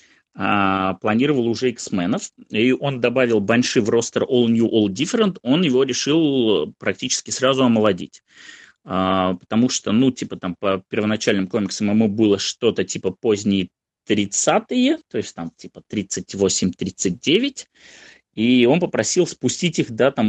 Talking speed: 140 wpm